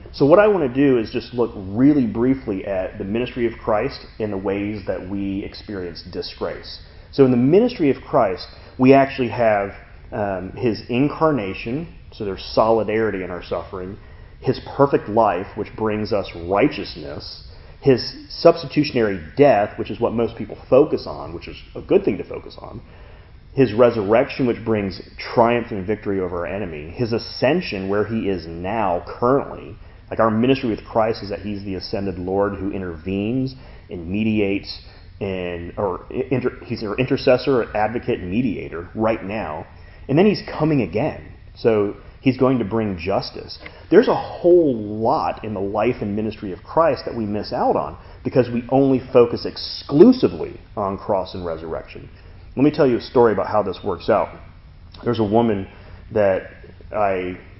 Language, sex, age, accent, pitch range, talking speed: English, male, 30-49, American, 95-120 Hz, 170 wpm